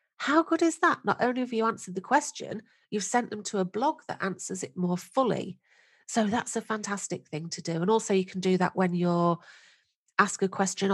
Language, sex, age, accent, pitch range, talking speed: English, female, 40-59, British, 170-205 Hz, 220 wpm